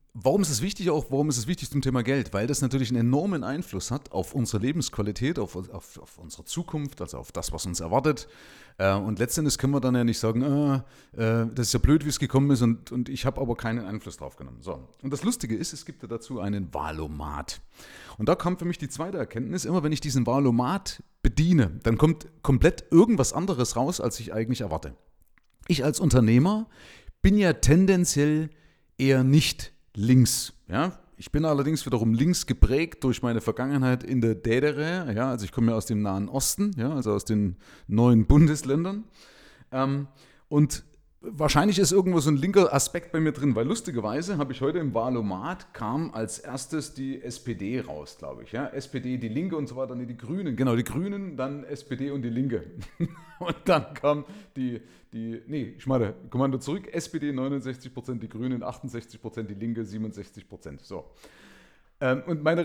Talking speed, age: 190 wpm, 30-49